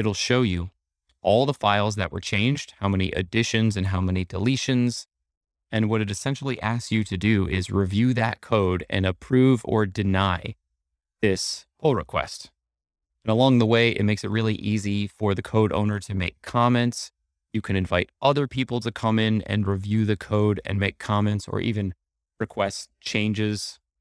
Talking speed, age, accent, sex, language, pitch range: 175 wpm, 20-39, American, male, English, 95-110 Hz